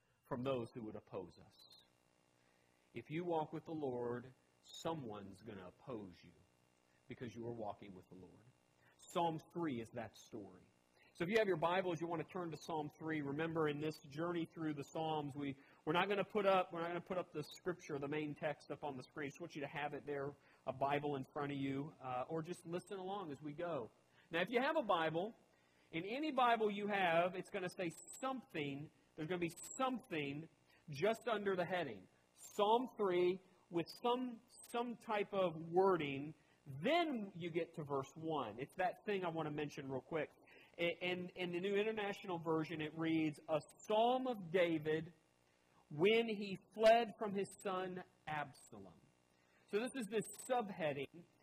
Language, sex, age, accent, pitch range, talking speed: English, male, 40-59, American, 140-185 Hz, 195 wpm